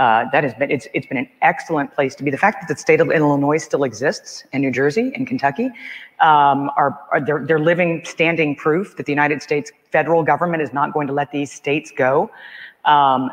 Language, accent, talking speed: English, American, 220 wpm